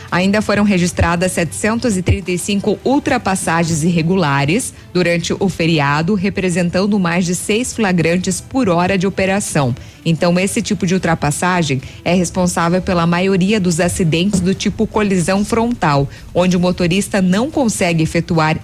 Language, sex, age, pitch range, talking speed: Portuguese, female, 20-39, 165-200 Hz, 125 wpm